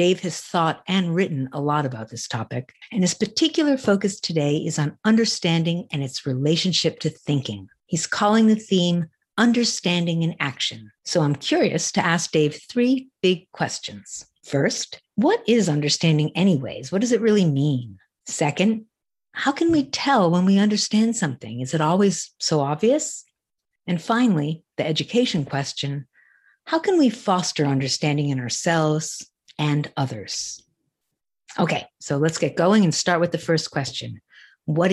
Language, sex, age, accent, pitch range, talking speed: English, female, 50-69, American, 150-205 Hz, 155 wpm